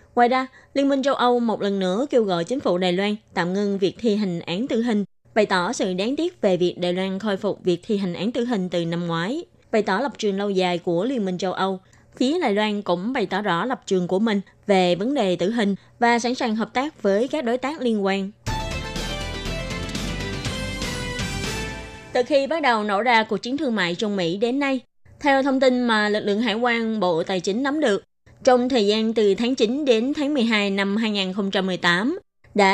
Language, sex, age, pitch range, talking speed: Vietnamese, female, 20-39, 190-245 Hz, 220 wpm